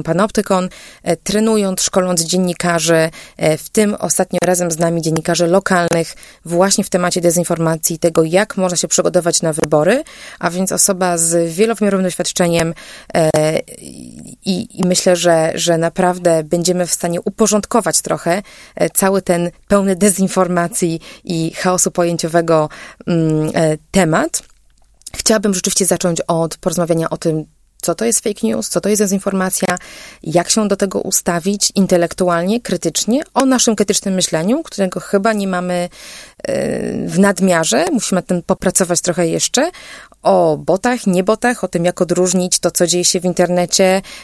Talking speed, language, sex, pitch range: 135 wpm, Polish, female, 170-200 Hz